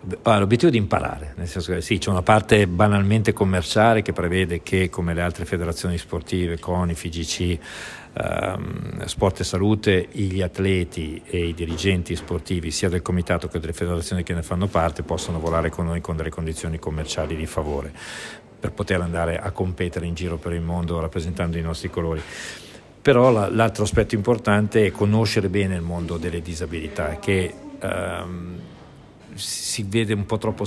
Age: 50-69